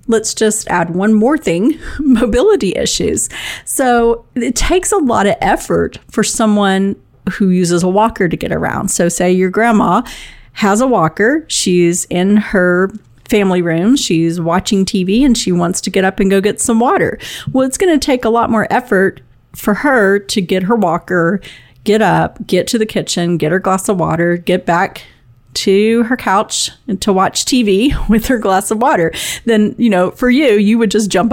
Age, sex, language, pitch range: 40-59, female, English, 180-235 Hz